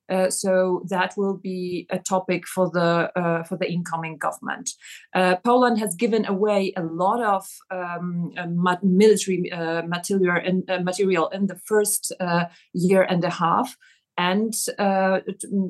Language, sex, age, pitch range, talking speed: English, female, 30-49, 180-200 Hz, 160 wpm